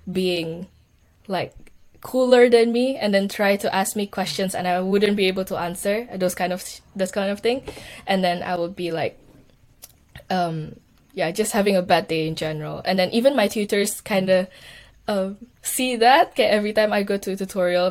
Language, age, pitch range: Indonesian, 10-29, 170-200 Hz